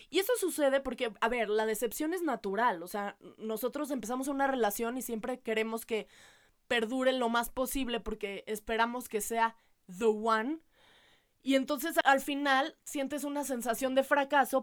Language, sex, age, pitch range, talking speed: Spanish, female, 20-39, 230-280 Hz, 160 wpm